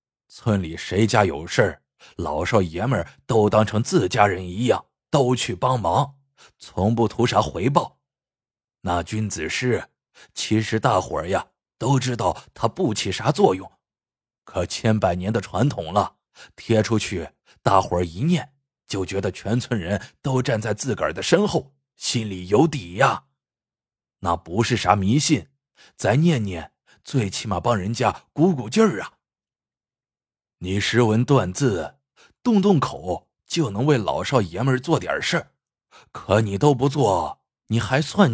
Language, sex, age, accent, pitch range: Chinese, male, 30-49, native, 105-140 Hz